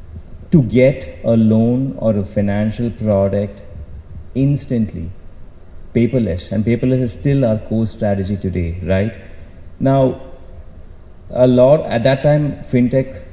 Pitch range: 90-115 Hz